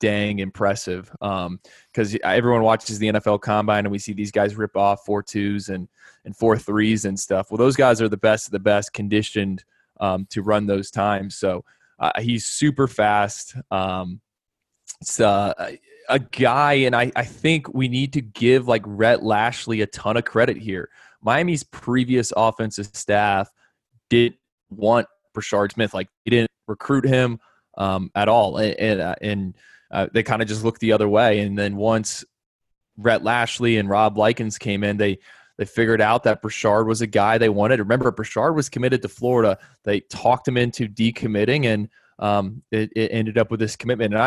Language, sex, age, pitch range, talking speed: English, male, 20-39, 105-120 Hz, 185 wpm